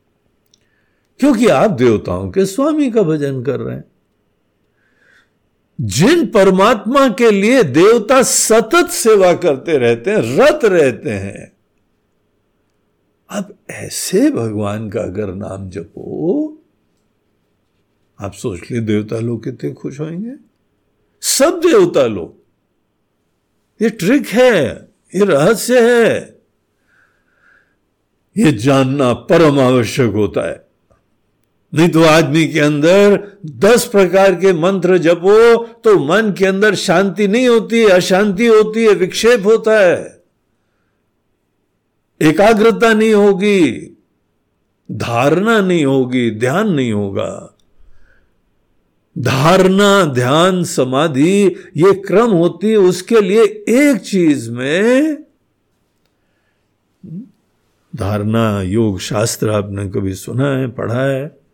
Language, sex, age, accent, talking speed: Hindi, male, 60-79, native, 100 wpm